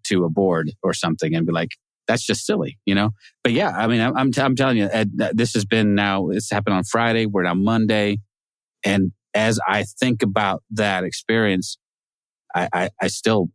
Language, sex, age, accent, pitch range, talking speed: English, male, 30-49, American, 95-115 Hz, 200 wpm